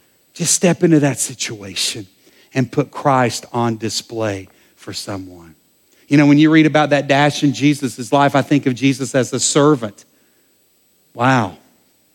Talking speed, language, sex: 155 wpm, English, male